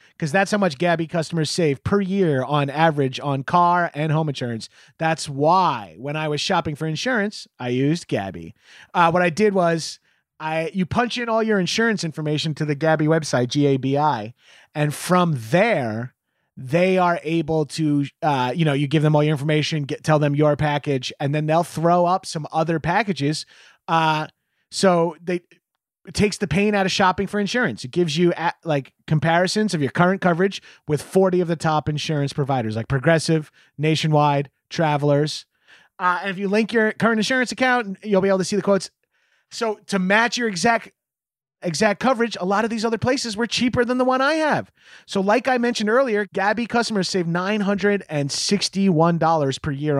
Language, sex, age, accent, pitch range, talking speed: English, male, 30-49, American, 150-200 Hz, 190 wpm